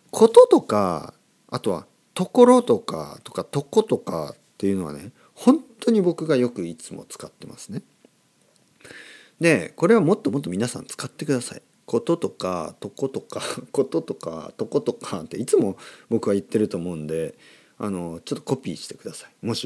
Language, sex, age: Japanese, male, 40-59